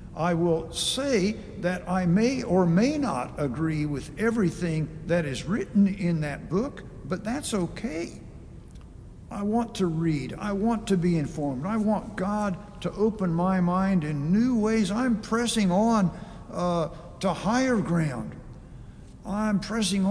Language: English